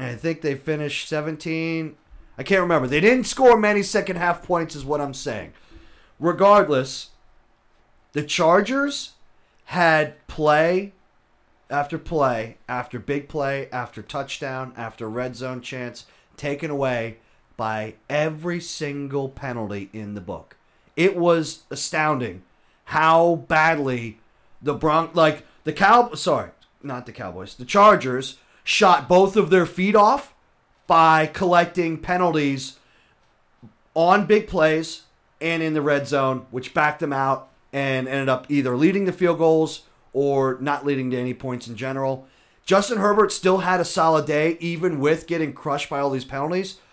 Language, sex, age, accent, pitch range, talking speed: English, male, 30-49, American, 130-165 Hz, 140 wpm